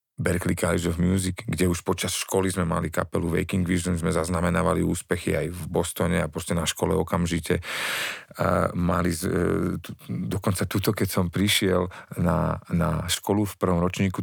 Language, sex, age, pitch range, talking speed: Slovak, male, 40-59, 85-105 Hz, 150 wpm